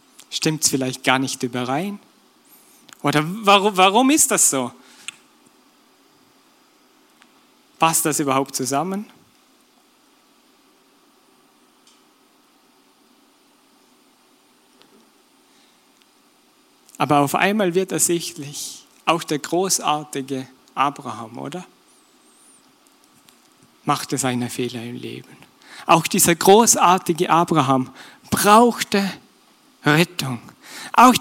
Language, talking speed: German, 75 wpm